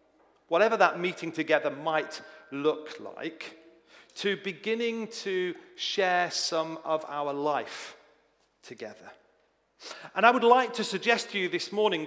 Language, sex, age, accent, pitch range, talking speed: English, male, 40-59, British, 160-230 Hz, 130 wpm